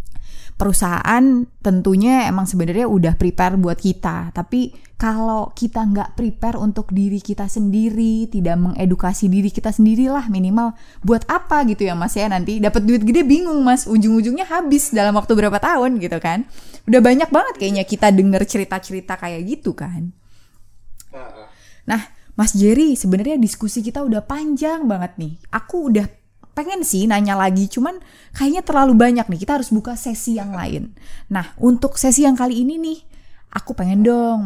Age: 20-39